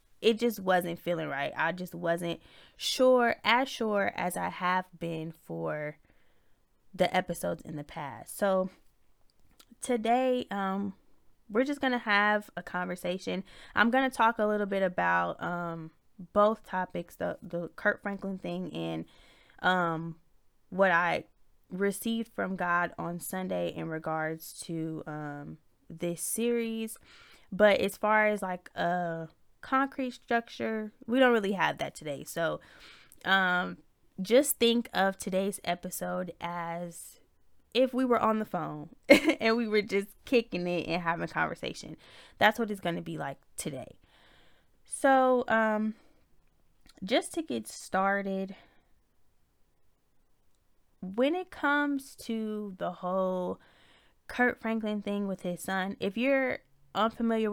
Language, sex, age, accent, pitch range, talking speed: English, female, 10-29, American, 170-225 Hz, 135 wpm